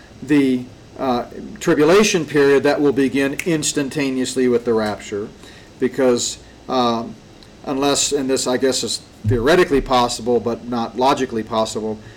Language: English